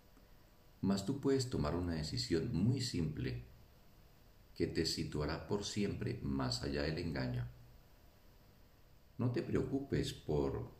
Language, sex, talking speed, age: Spanish, male, 115 wpm, 50-69